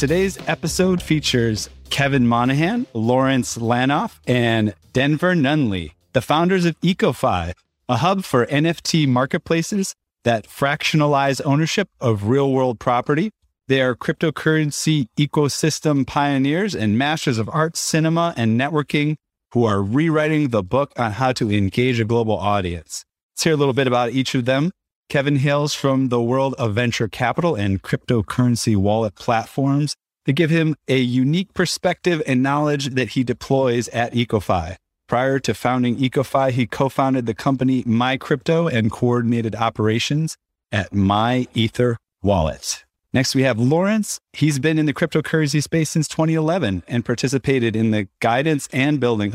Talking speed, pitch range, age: 145 wpm, 115-150 Hz, 30-49